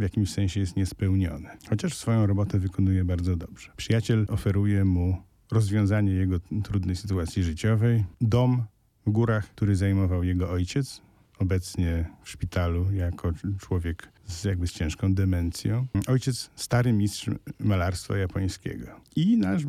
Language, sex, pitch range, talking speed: Polish, male, 90-110 Hz, 130 wpm